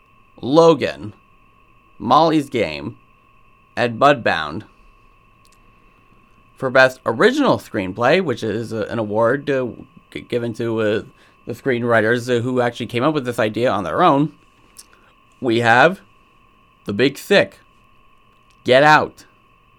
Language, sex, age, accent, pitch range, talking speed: English, male, 30-49, American, 105-155 Hz, 115 wpm